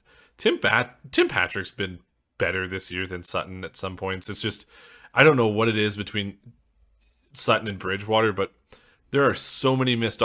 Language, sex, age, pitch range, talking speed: English, male, 30-49, 95-115 Hz, 180 wpm